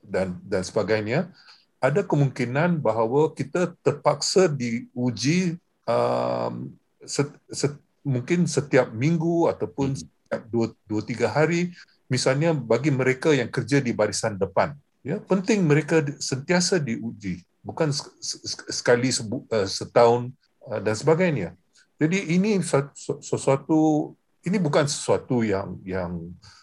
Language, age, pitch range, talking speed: Malay, 50-69, 105-160 Hz, 120 wpm